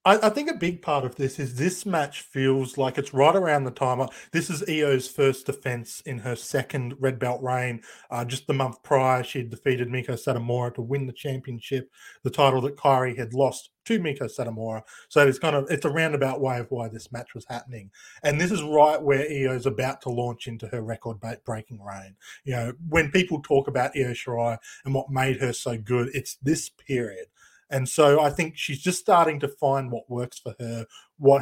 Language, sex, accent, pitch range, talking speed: English, male, Australian, 120-145 Hz, 210 wpm